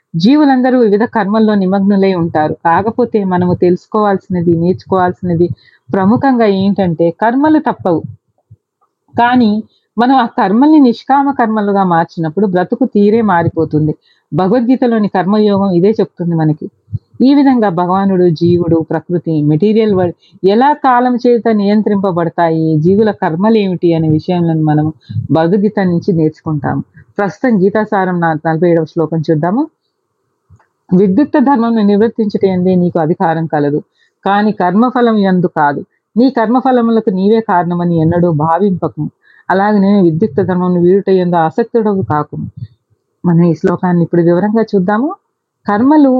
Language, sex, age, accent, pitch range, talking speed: Telugu, female, 40-59, native, 170-225 Hz, 110 wpm